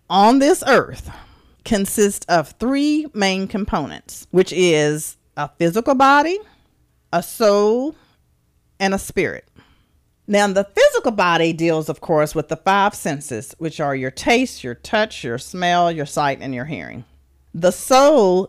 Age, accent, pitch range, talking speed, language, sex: 40-59, American, 155-225 Hz, 145 wpm, English, female